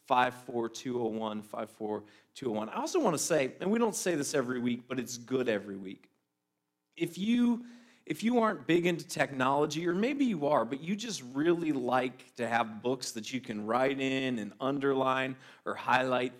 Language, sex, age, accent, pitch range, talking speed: English, male, 40-59, American, 120-170 Hz, 175 wpm